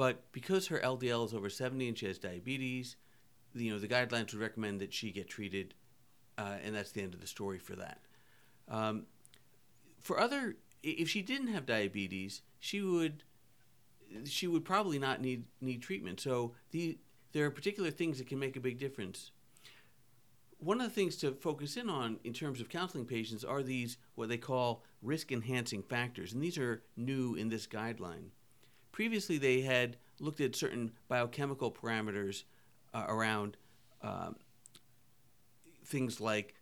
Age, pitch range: 50-69, 115-140 Hz